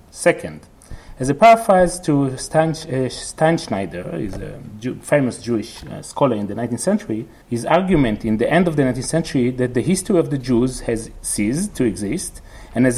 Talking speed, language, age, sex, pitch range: 175 wpm, English, 40-59, male, 110-160 Hz